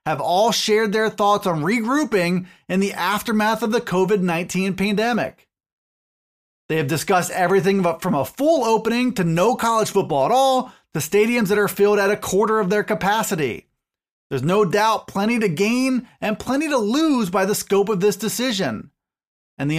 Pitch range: 185-235 Hz